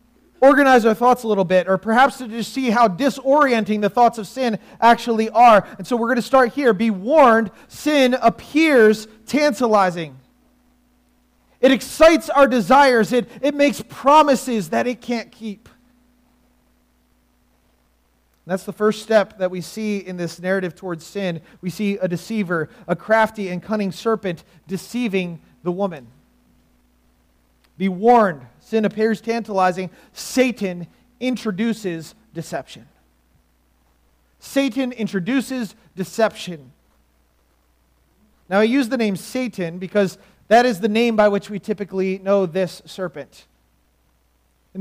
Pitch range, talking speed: 160-230 Hz, 130 wpm